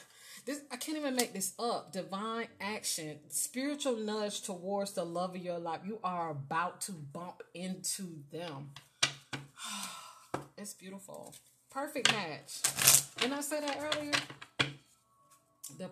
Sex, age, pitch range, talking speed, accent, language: female, 30-49, 175-250 Hz, 130 wpm, American, English